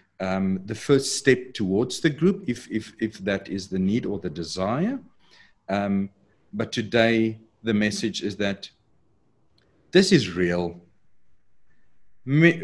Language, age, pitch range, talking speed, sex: English, 50-69, 100-135 Hz, 135 wpm, male